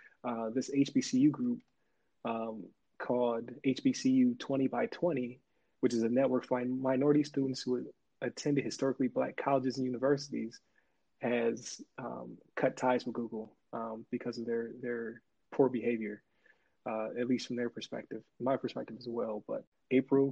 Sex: male